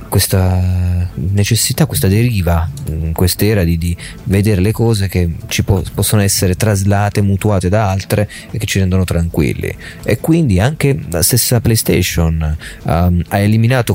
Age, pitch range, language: 30-49, 90-110 Hz, Italian